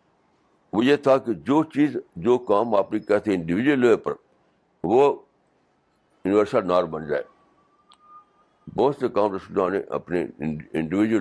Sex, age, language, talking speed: male, 60-79, Urdu, 145 wpm